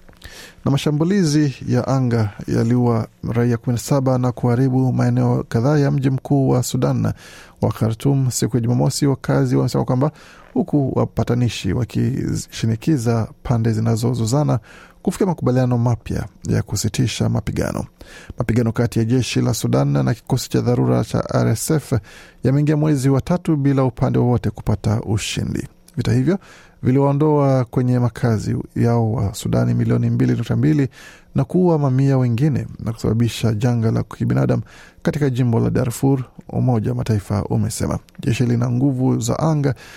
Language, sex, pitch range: Swahili, male, 115-135 Hz